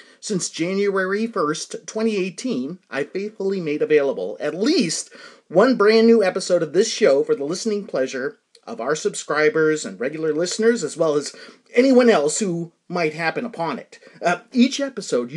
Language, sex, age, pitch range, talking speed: English, male, 30-49, 165-245 Hz, 155 wpm